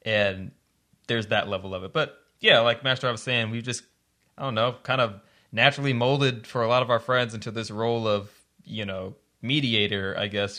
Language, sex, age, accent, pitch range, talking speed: English, male, 20-39, American, 105-130 Hz, 210 wpm